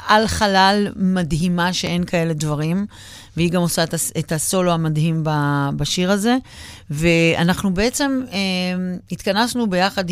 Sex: female